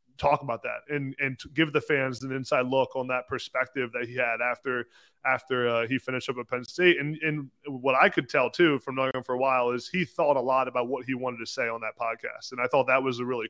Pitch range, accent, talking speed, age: 125-145 Hz, American, 265 wpm, 20-39